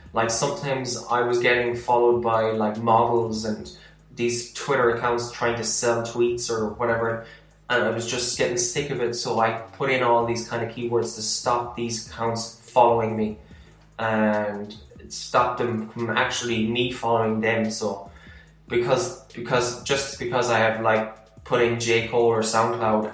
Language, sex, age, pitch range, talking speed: English, male, 10-29, 110-120 Hz, 165 wpm